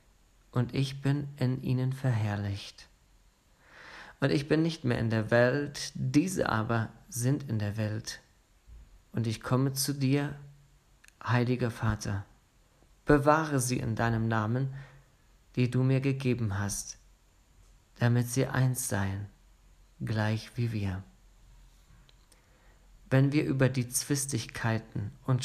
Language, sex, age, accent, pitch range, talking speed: German, male, 40-59, German, 115-135 Hz, 120 wpm